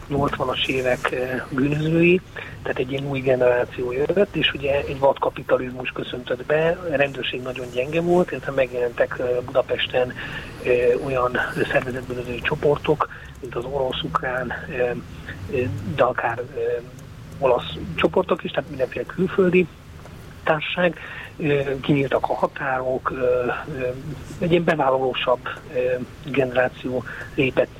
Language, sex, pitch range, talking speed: Hungarian, male, 120-150 Hz, 120 wpm